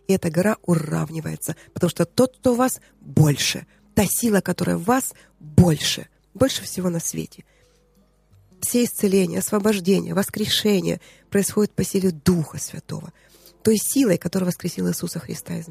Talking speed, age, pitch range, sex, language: 140 wpm, 20-39, 170-215 Hz, female, Russian